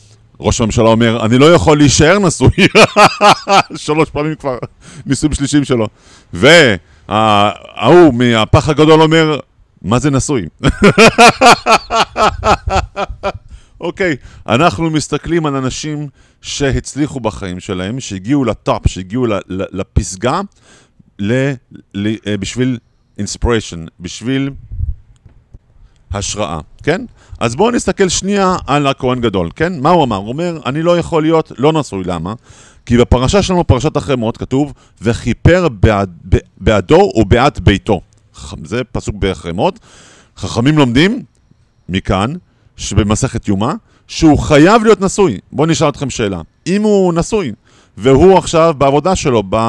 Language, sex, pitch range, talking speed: Hebrew, male, 105-155 Hz, 110 wpm